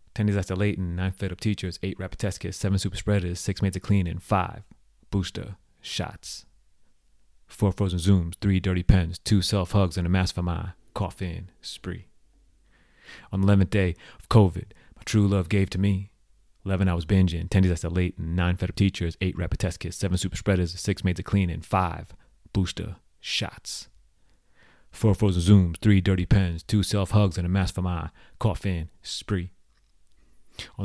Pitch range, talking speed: 90-100 Hz, 185 wpm